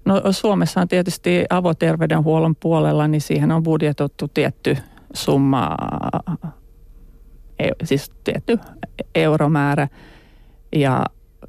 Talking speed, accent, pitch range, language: 85 wpm, native, 135-165 Hz, Finnish